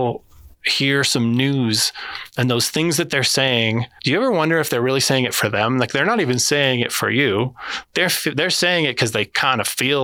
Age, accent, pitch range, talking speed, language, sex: 20-39, American, 115-140 Hz, 220 wpm, English, male